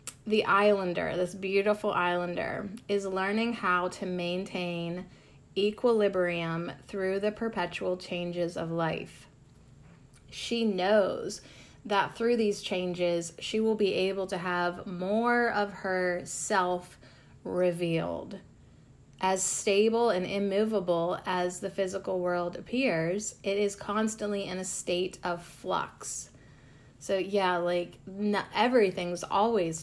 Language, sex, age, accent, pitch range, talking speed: English, female, 30-49, American, 180-225 Hz, 115 wpm